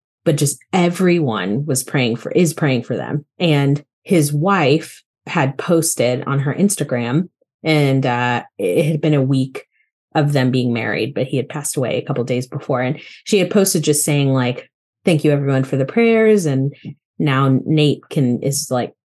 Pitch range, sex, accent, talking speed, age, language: 135-175 Hz, female, American, 180 wpm, 30-49, English